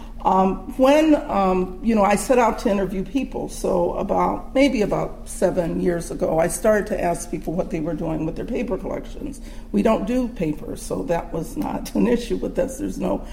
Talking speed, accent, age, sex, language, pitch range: 205 wpm, American, 50-69, female, English, 185-235 Hz